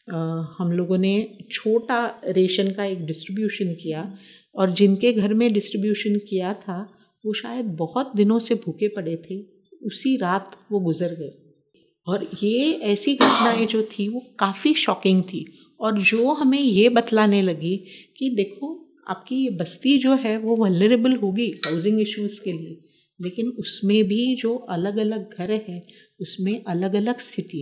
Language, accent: Hindi, native